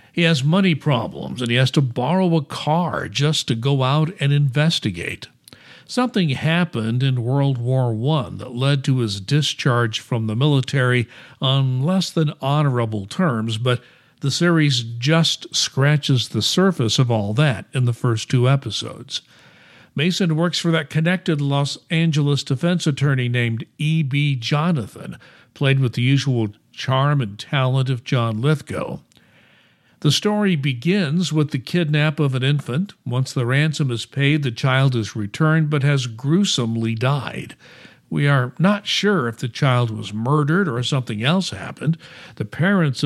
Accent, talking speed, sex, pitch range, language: American, 155 wpm, male, 125-155 Hz, English